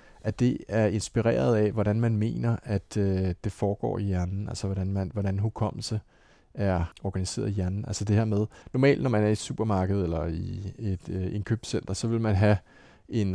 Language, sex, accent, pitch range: Danish, male, native, 100-120 Hz